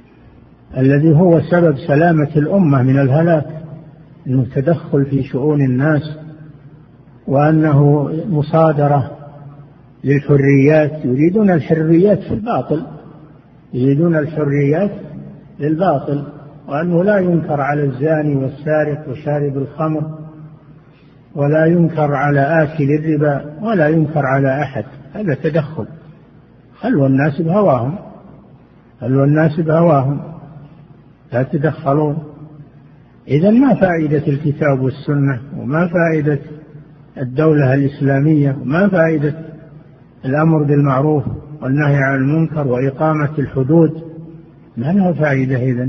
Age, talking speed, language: 50-69, 95 wpm, Arabic